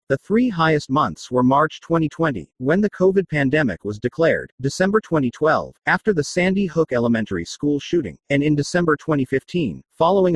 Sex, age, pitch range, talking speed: male, 40-59, 125-160 Hz, 155 wpm